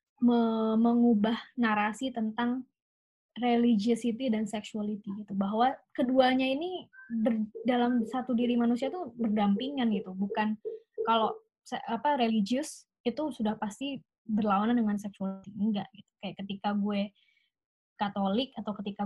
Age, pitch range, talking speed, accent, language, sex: 20-39, 215-255 Hz, 120 wpm, native, Indonesian, female